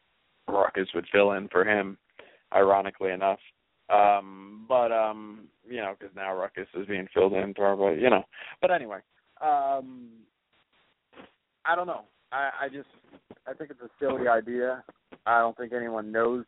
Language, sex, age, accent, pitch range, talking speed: English, male, 30-49, American, 110-155 Hz, 155 wpm